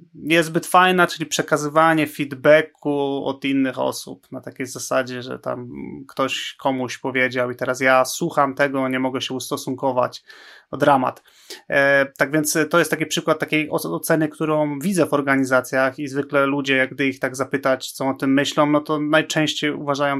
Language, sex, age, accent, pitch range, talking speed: Polish, male, 30-49, native, 135-150 Hz, 165 wpm